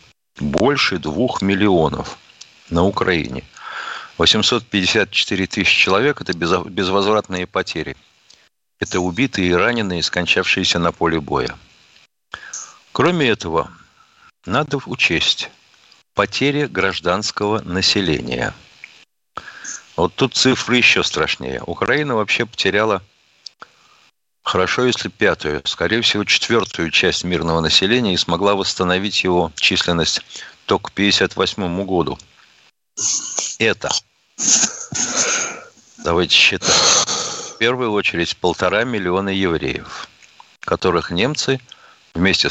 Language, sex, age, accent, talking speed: Russian, male, 50-69, native, 90 wpm